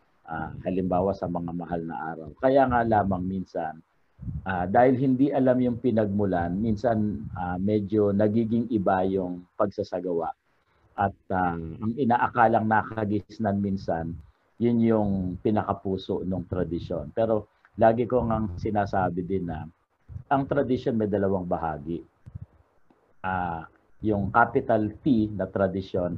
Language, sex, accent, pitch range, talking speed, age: Filipino, male, native, 95-115 Hz, 130 wpm, 50-69